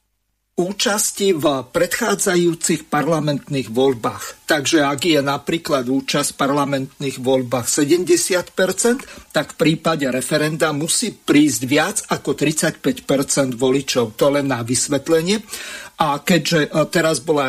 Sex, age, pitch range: male, 50-69, 140-180 Hz